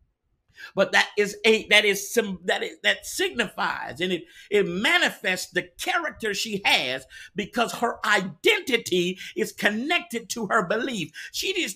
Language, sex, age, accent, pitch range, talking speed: English, male, 50-69, American, 180-240 Hz, 145 wpm